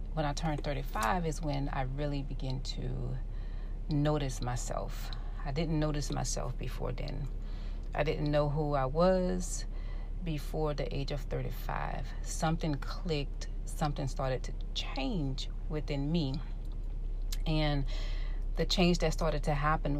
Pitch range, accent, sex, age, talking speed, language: 130-150 Hz, American, female, 40-59, 130 wpm, English